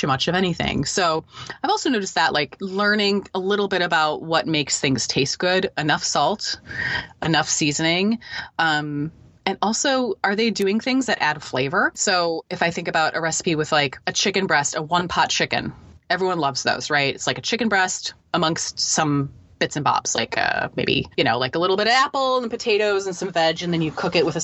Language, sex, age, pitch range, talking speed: English, female, 20-39, 150-210 Hz, 210 wpm